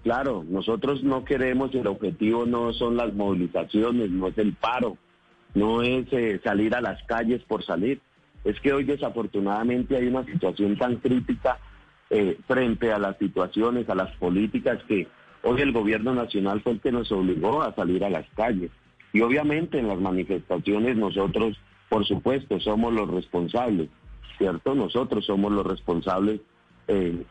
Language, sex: Spanish, male